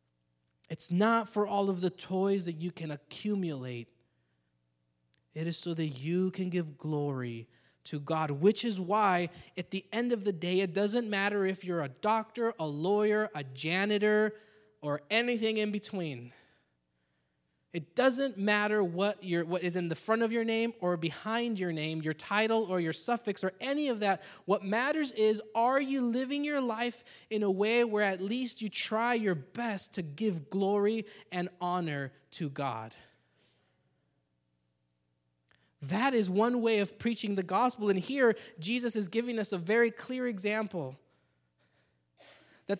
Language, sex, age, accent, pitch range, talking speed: English, male, 20-39, American, 140-215 Hz, 160 wpm